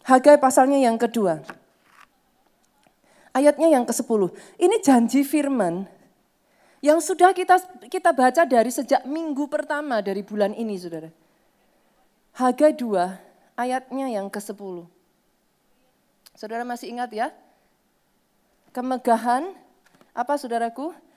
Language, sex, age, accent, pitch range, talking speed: Indonesian, female, 20-39, native, 255-345 Hz, 100 wpm